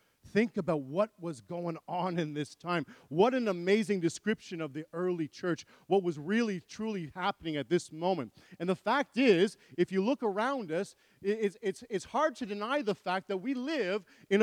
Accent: American